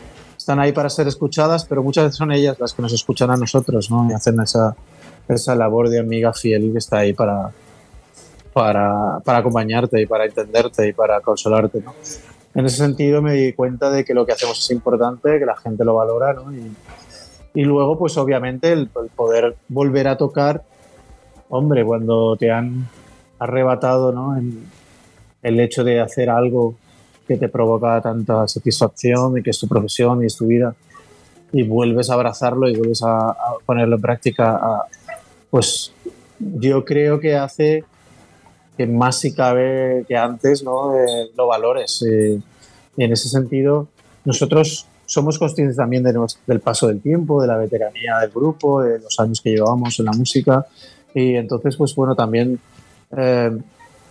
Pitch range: 115-140 Hz